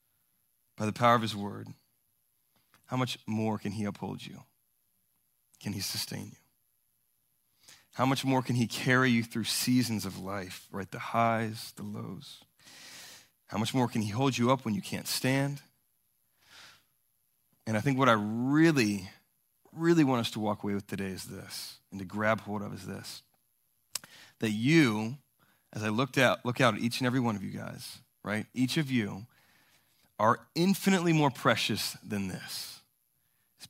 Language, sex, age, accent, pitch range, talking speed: English, male, 30-49, American, 105-130 Hz, 170 wpm